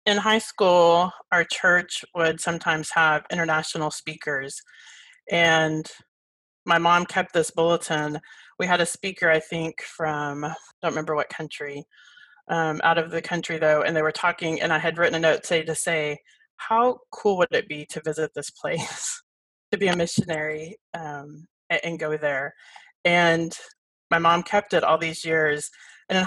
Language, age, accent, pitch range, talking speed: English, 30-49, American, 155-185 Hz, 170 wpm